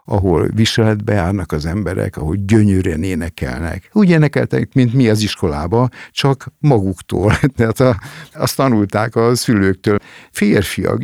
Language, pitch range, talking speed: Hungarian, 95-120 Hz, 120 wpm